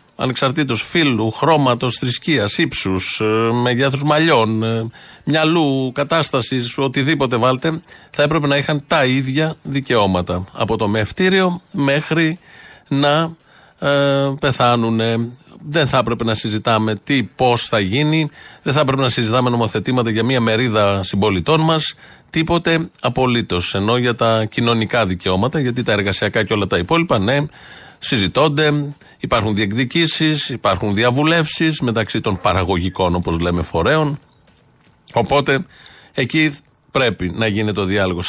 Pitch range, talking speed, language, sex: 110-155 Hz, 120 wpm, Greek, male